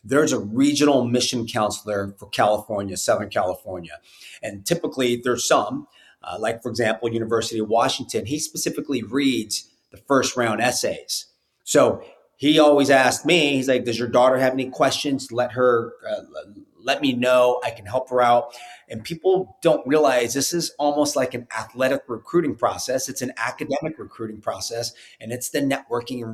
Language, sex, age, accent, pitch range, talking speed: English, male, 30-49, American, 115-150 Hz, 165 wpm